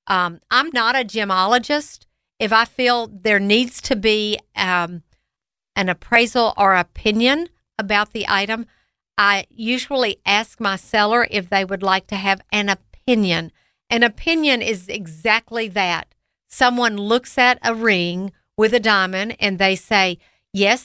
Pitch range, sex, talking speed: 195-245 Hz, female, 145 wpm